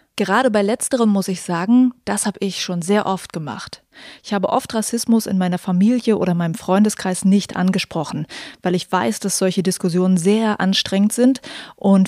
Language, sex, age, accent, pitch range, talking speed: German, female, 20-39, German, 190-230 Hz, 175 wpm